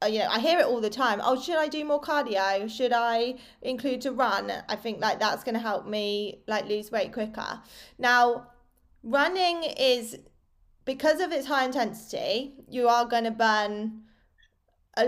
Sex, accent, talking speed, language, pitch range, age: female, British, 185 wpm, English, 215-265 Hz, 20-39